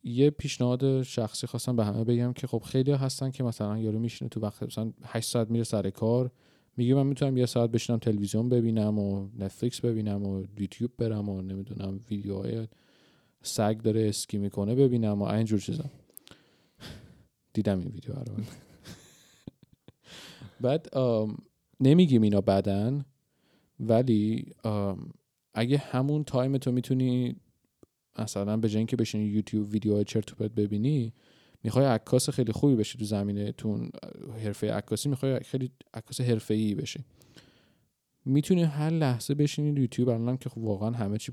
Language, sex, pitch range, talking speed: Persian, male, 105-130 Hz, 140 wpm